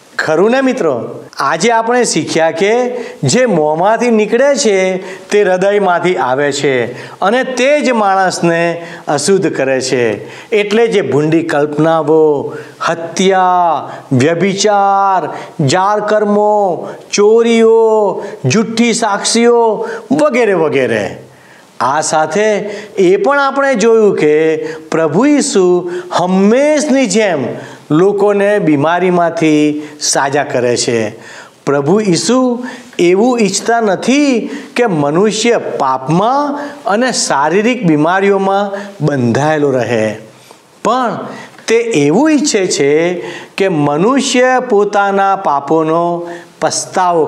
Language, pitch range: Gujarati, 155-230 Hz